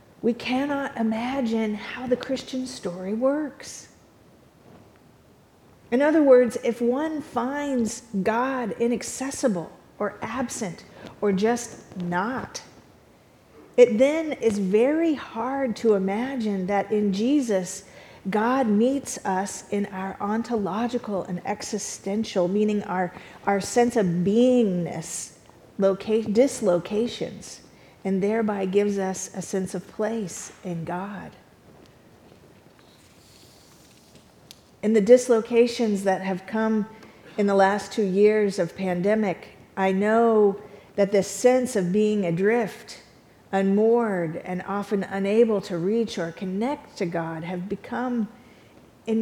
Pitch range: 195-240 Hz